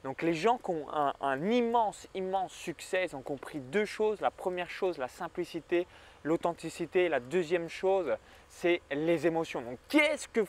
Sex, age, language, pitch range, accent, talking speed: male, 20-39, French, 160-210 Hz, French, 170 wpm